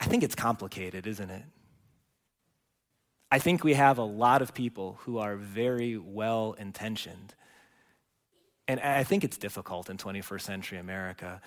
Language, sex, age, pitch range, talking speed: English, male, 30-49, 115-155 Hz, 140 wpm